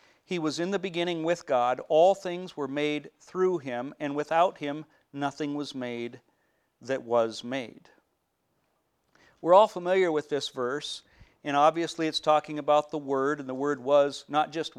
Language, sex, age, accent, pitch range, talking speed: English, male, 50-69, American, 135-165 Hz, 165 wpm